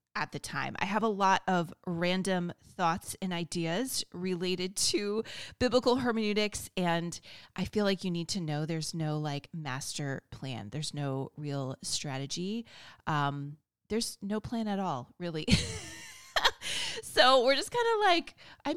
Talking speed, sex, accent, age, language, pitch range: 150 wpm, female, American, 30-49, English, 160-220 Hz